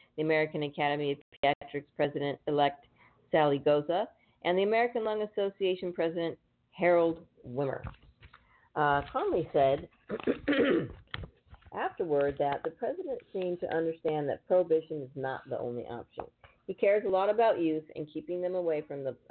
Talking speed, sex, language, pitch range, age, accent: 140 wpm, female, English, 130-165 Hz, 50-69, American